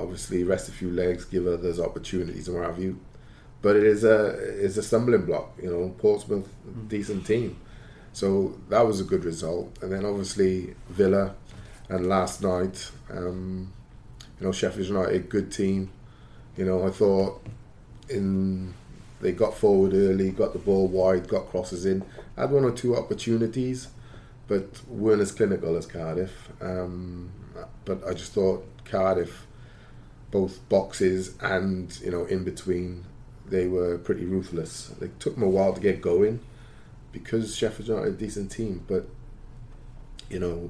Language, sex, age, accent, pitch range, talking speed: English, male, 20-39, British, 95-110 Hz, 160 wpm